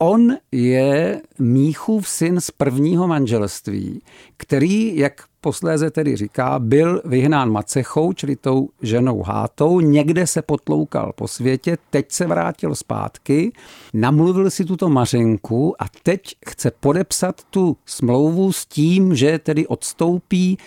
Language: Czech